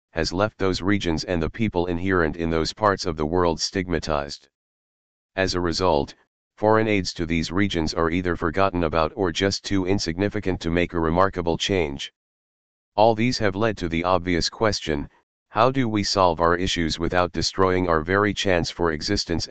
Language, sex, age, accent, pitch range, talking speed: English, male, 40-59, American, 80-95 Hz, 175 wpm